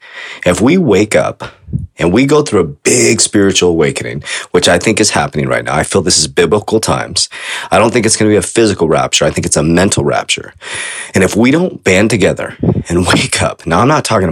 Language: English